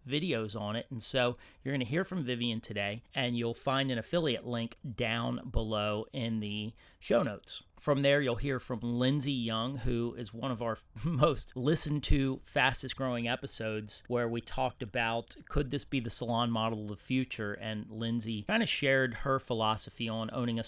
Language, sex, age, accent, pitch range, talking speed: English, male, 30-49, American, 110-135 Hz, 185 wpm